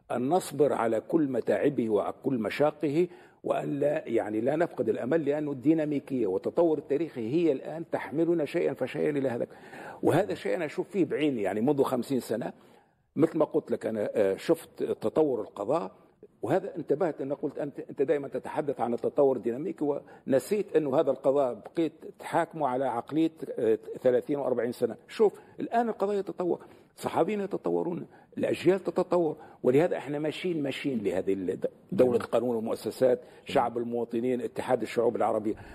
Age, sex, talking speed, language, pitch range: 50-69, male, 145 wpm, Arabic, 140-180 Hz